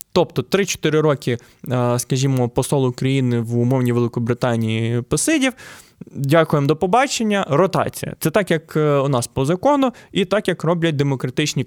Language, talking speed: Ukrainian, 135 wpm